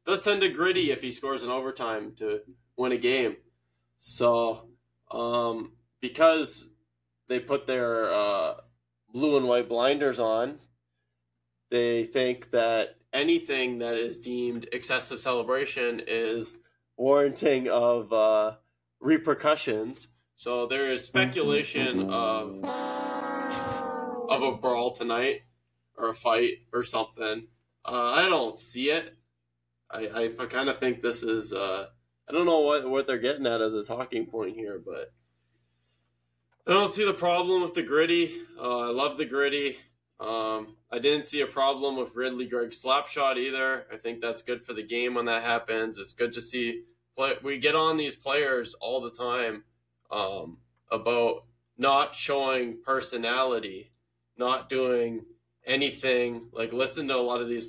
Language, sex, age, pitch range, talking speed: English, male, 20-39, 110-135 Hz, 150 wpm